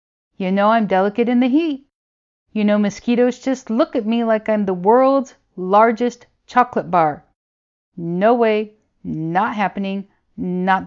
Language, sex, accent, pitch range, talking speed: English, female, American, 175-225 Hz, 145 wpm